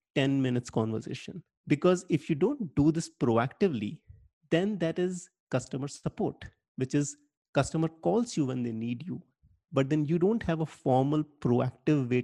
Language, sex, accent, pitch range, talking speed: English, male, Indian, 120-165 Hz, 160 wpm